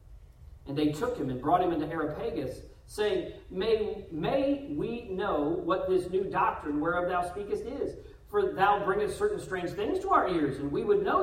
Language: English